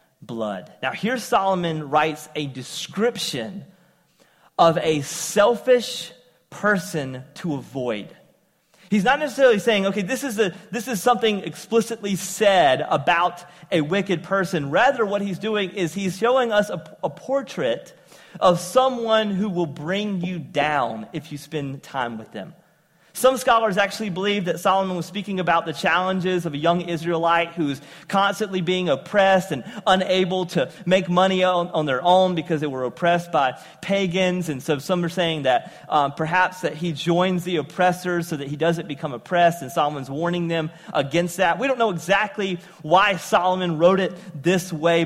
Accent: American